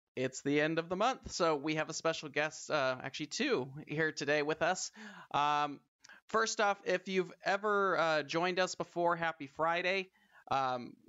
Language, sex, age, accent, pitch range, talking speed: English, male, 30-49, American, 140-170 Hz, 175 wpm